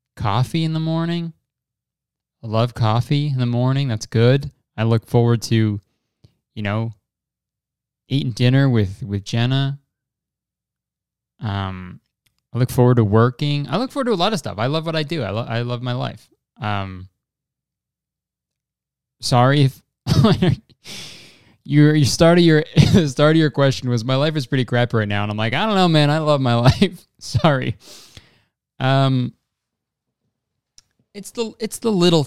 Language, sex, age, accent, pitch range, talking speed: English, male, 20-39, American, 110-145 Hz, 165 wpm